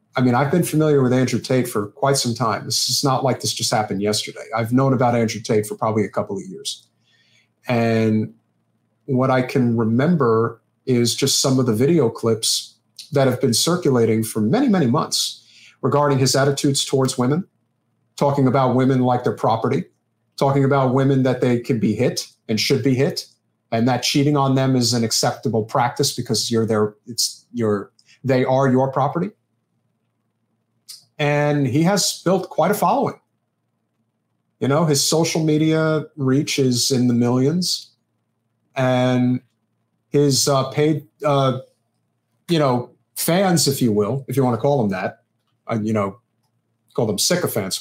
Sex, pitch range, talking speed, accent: male, 115-140 Hz, 165 wpm, American